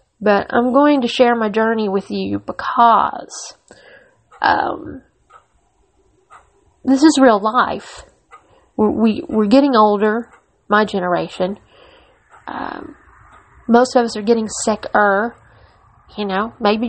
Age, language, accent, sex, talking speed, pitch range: 40-59, English, American, female, 105 wpm, 205-245 Hz